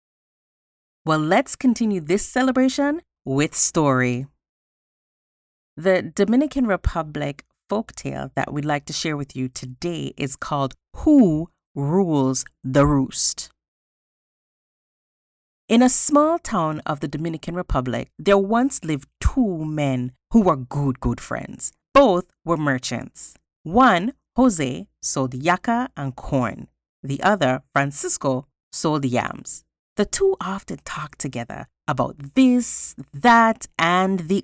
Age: 30-49